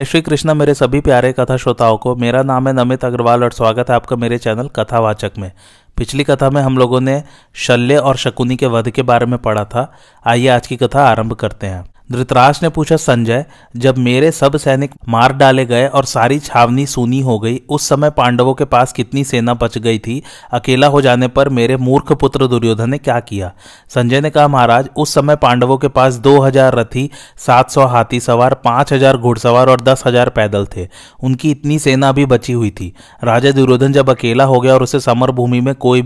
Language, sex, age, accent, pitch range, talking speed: Hindi, male, 30-49, native, 120-135 Hz, 210 wpm